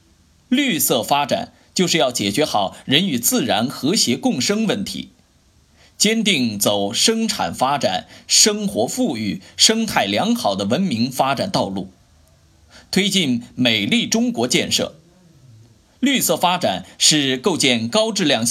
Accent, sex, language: native, male, Chinese